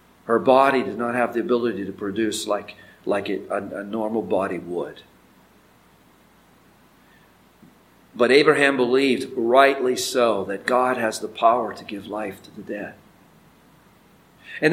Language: English